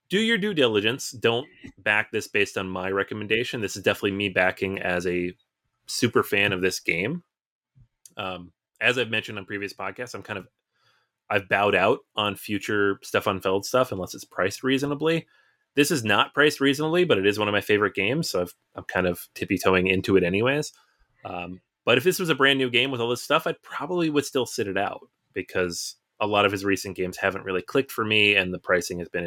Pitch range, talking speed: 95-130 Hz, 215 wpm